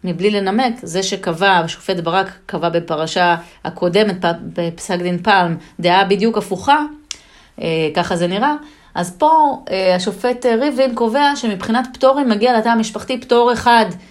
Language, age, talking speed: Hebrew, 30-49, 135 wpm